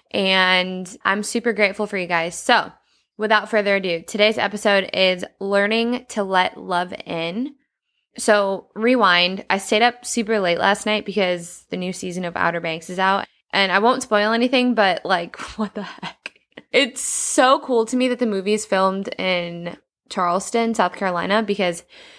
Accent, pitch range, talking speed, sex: American, 180-225 Hz, 170 wpm, female